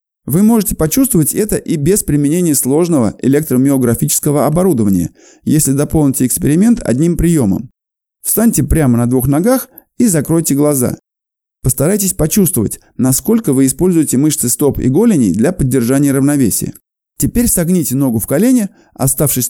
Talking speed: 125 wpm